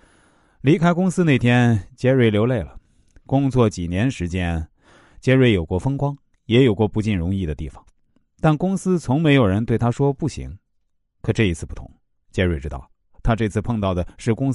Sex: male